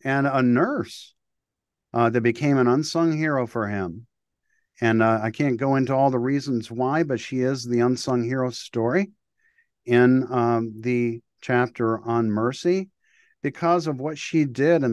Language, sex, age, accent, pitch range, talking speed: English, male, 50-69, American, 110-135 Hz, 160 wpm